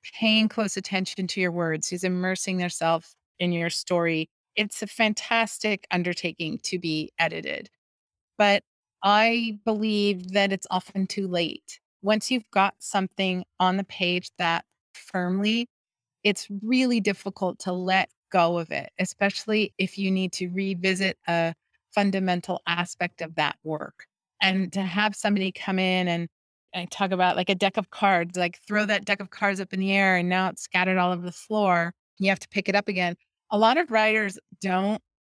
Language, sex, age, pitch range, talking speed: English, female, 30-49, 180-205 Hz, 175 wpm